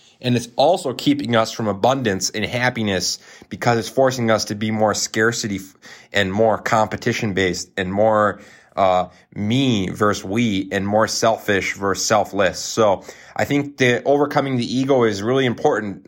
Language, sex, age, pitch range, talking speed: English, male, 20-39, 100-125 Hz, 155 wpm